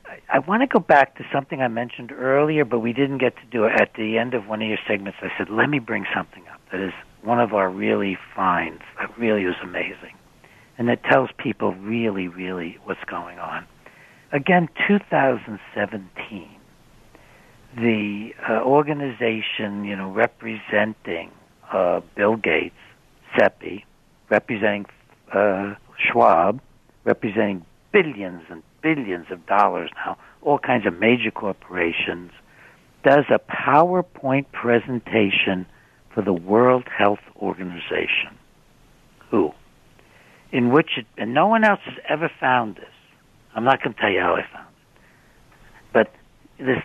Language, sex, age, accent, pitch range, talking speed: English, male, 60-79, American, 100-130 Hz, 145 wpm